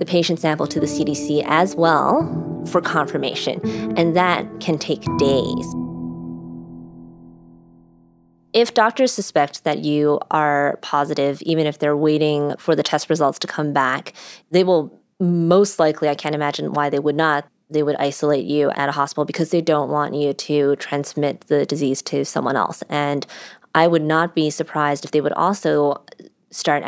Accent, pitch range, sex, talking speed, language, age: American, 145-165 Hz, female, 165 wpm, English, 20-39